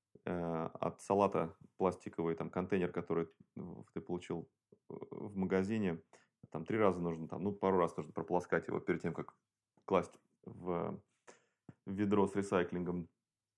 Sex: male